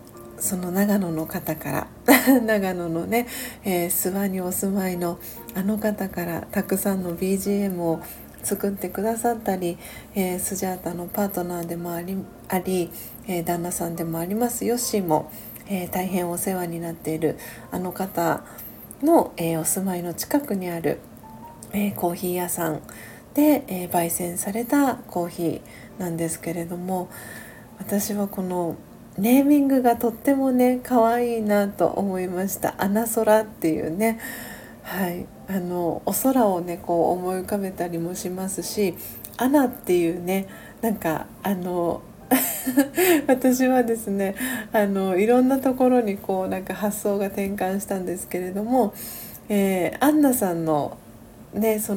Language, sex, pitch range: Japanese, female, 175-215 Hz